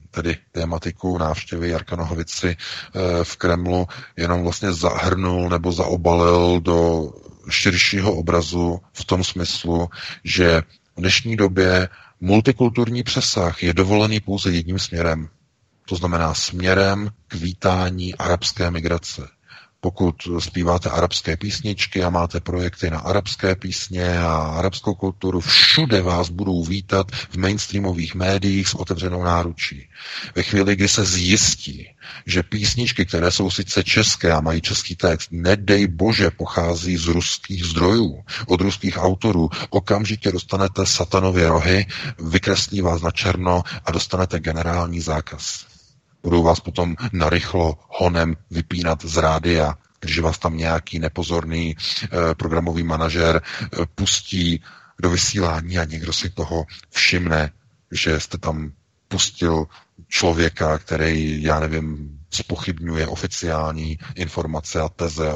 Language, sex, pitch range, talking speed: Czech, male, 80-95 Hz, 120 wpm